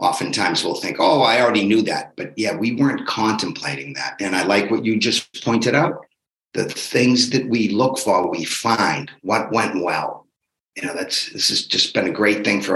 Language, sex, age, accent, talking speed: English, male, 50-69, American, 205 wpm